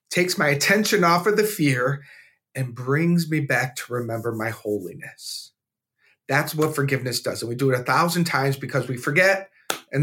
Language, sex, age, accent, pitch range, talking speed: English, male, 40-59, American, 130-160 Hz, 180 wpm